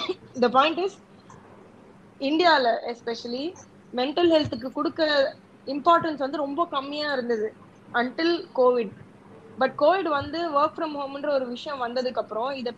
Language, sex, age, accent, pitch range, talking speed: Tamil, female, 20-39, native, 240-310 Hz, 100 wpm